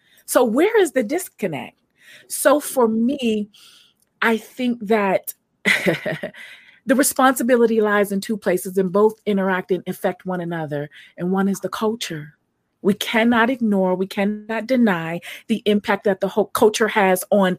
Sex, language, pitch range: female, English, 190-230 Hz